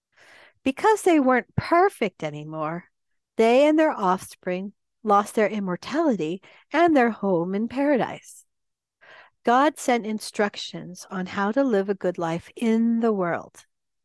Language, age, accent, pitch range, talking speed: English, 50-69, American, 180-255 Hz, 130 wpm